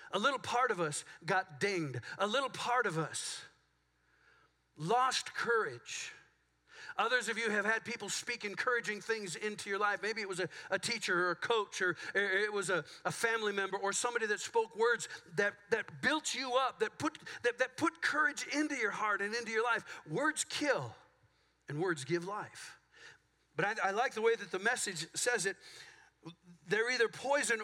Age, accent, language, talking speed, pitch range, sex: 50-69, American, English, 180 wpm, 175-250 Hz, male